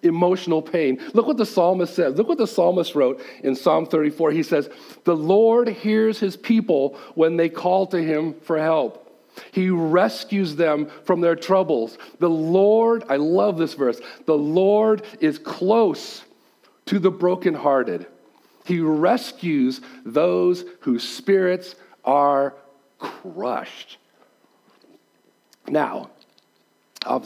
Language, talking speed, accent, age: English, 125 wpm, American, 40-59